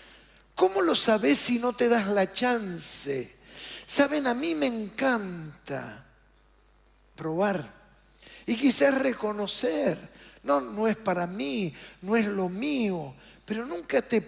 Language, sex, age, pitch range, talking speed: Spanish, male, 50-69, 185-250 Hz, 125 wpm